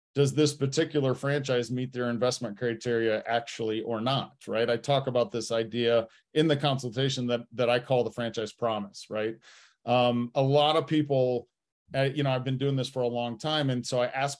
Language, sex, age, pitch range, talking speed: English, male, 40-59, 120-145 Hz, 200 wpm